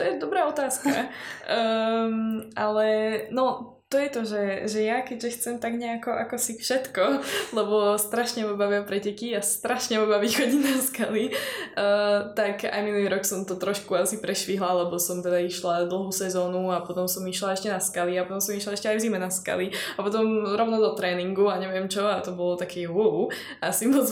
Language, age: Slovak, 10-29